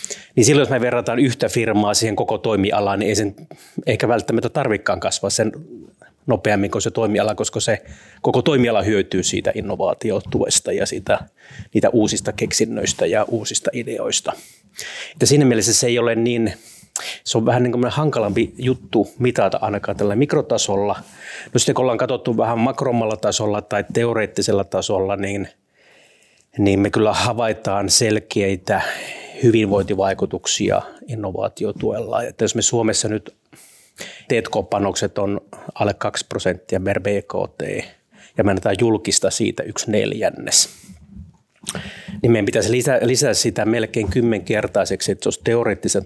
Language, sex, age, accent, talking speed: Finnish, male, 30-49, native, 140 wpm